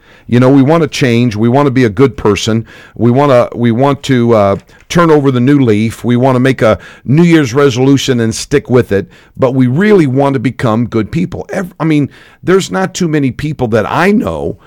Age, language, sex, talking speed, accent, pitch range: 50-69, English, male, 225 wpm, American, 115-145 Hz